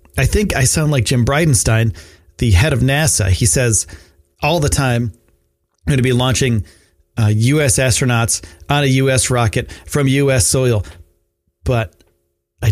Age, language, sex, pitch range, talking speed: 30-49, English, male, 85-135 Hz, 155 wpm